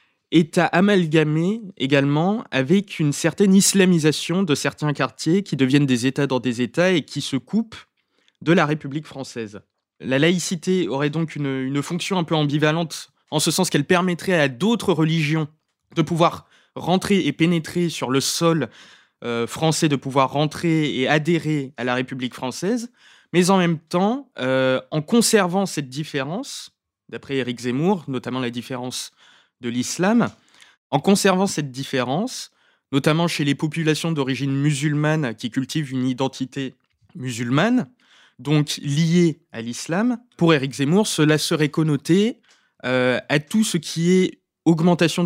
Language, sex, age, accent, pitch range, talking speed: French, male, 20-39, French, 130-175 Hz, 150 wpm